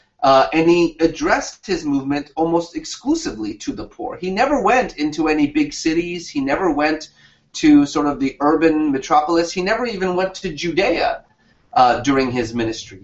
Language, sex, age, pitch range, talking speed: German, male, 30-49, 150-230 Hz, 170 wpm